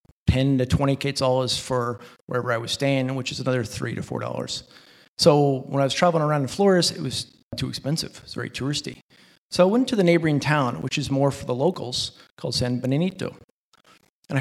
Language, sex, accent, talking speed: English, male, American, 200 wpm